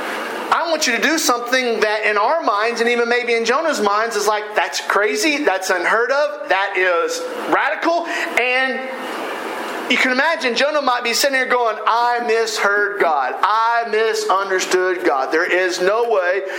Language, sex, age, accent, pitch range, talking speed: English, male, 50-69, American, 210-290 Hz, 165 wpm